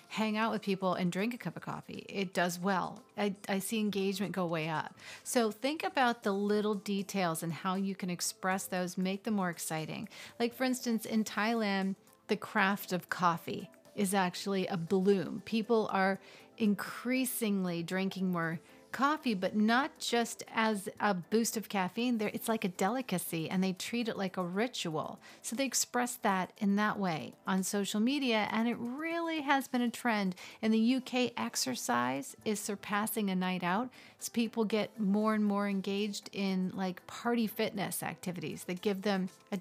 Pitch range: 190-225 Hz